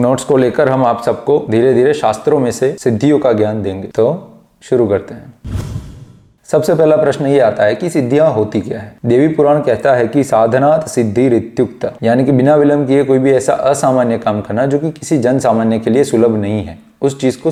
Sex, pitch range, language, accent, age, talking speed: male, 115-140 Hz, Hindi, native, 20-39, 205 wpm